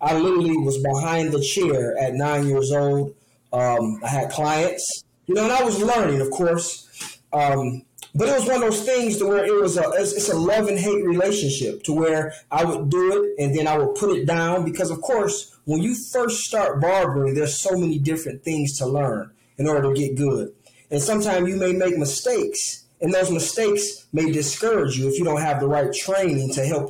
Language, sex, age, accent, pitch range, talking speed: English, male, 20-39, American, 140-190 Hz, 215 wpm